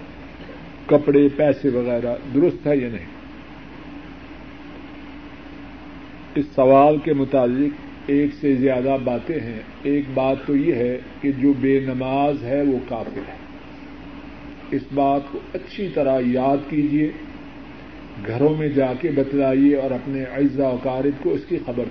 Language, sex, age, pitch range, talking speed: Urdu, male, 50-69, 135-170 Hz, 135 wpm